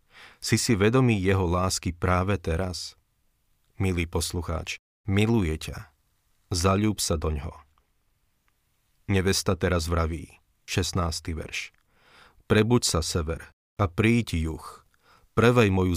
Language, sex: Slovak, male